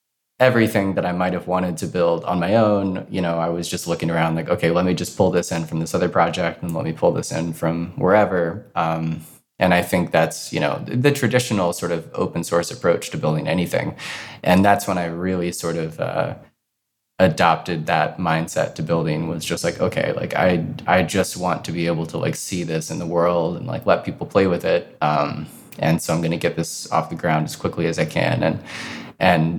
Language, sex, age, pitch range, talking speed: English, male, 20-39, 80-90 Hz, 230 wpm